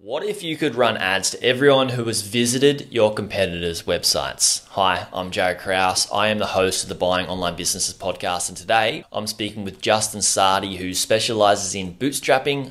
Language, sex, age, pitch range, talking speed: English, male, 20-39, 95-120 Hz, 185 wpm